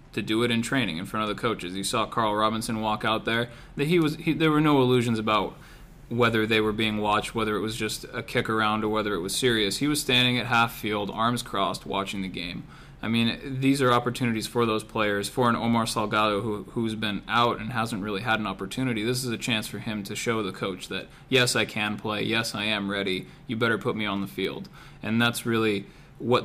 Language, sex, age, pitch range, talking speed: English, male, 20-39, 105-120 Hz, 240 wpm